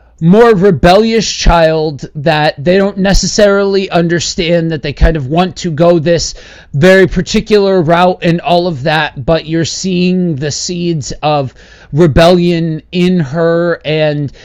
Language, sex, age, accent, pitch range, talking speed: English, male, 30-49, American, 150-185 Hz, 135 wpm